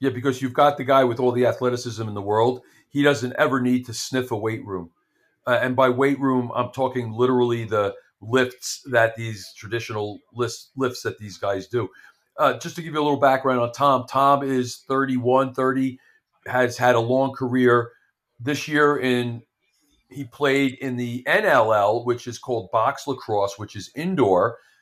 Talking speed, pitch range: 185 wpm, 115-135 Hz